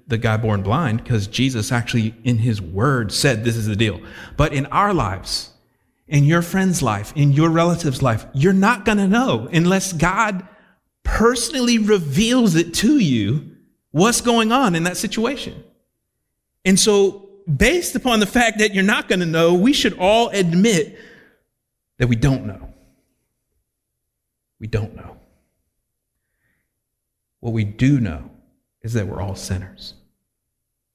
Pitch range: 115-180 Hz